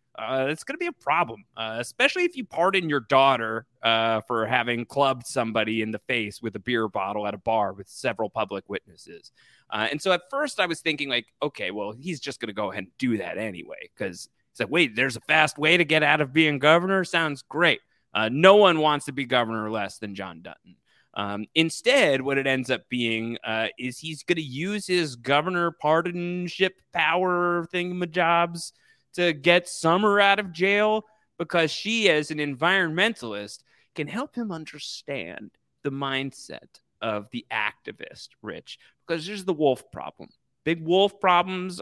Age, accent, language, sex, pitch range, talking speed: 30-49, American, English, male, 125-180 Hz, 185 wpm